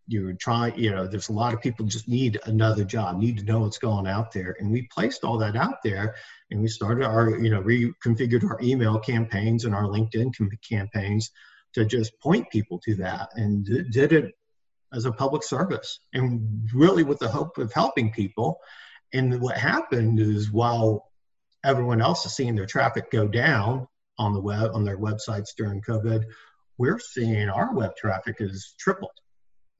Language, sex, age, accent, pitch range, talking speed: English, male, 50-69, American, 110-130 Hz, 185 wpm